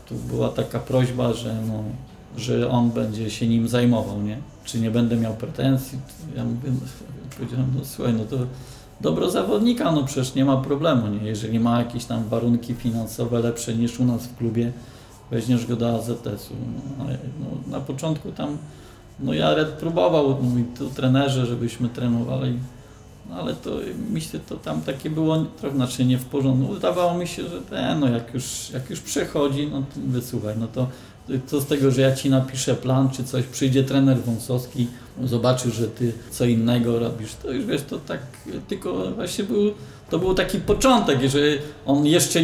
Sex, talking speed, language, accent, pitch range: male, 180 wpm, Polish, native, 120-140 Hz